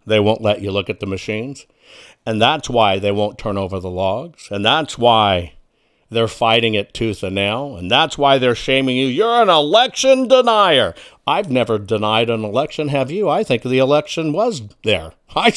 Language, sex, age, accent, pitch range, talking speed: English, male, 60-79, American, 105-155 Hz, 195 wpm